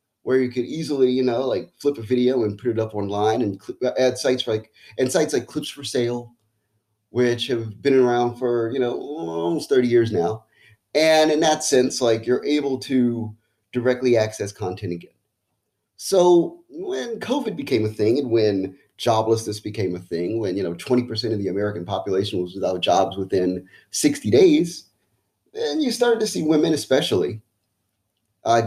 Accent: American